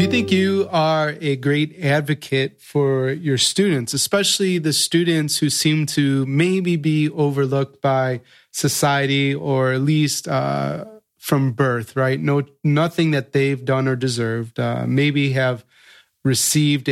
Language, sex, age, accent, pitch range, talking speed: English, male, 30-49, American, 130-155 Hz, 140 wpm